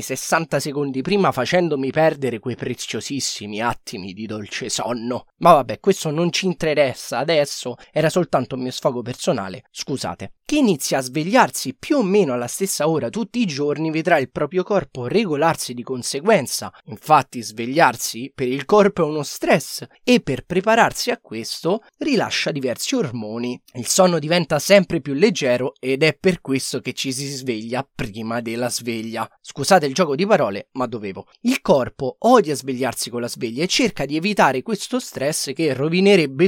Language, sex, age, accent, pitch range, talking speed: Italian, male, 20-39, native, 130-190 Hz, 165 wpm